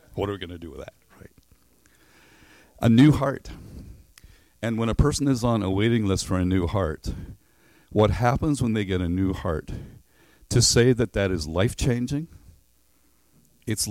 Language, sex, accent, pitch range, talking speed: English, male, American, 90-120 Hz, 175 wpm